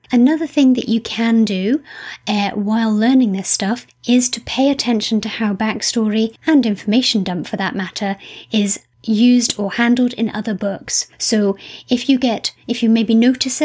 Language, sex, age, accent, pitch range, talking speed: English, female, 30-49, British, 200-245 Hz, 170 wpm